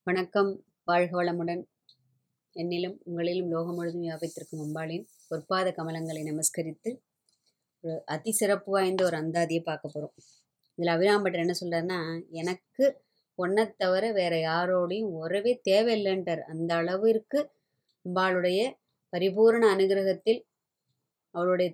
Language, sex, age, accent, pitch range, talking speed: Tamil, male, 20-39, native, 165-205 Hz, 100 wpm